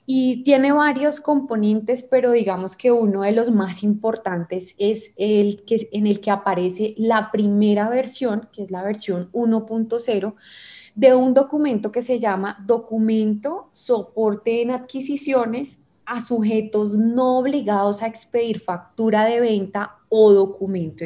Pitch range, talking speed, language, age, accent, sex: 210-255 Hz, 135 wpm, Spanish, 20-39, Colombian, female